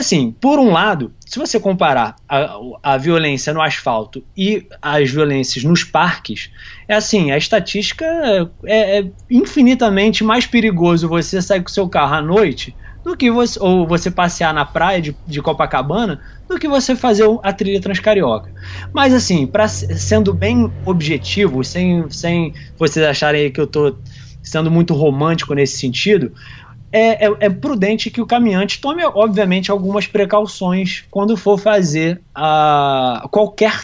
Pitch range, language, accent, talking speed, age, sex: 150-205 Hz, Portuguese, Brazilian, 155 wpm, 20-39, male